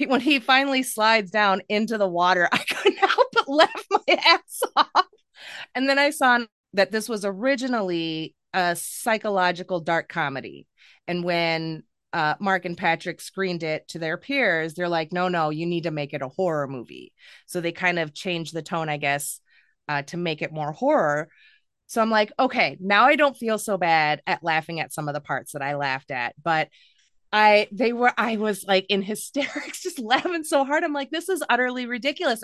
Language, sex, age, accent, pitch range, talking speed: English, female, 30-49, American, 160-245 Hz, 195 wpm